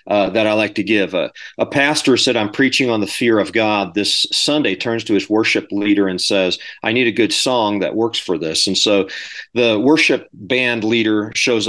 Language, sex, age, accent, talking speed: English, male, 40-59, American, 215 wpm